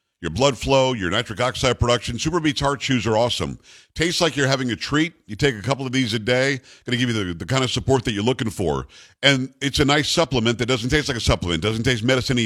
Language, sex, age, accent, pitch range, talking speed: English, male, 50-69, American, 110-140 Hz, 260 wpm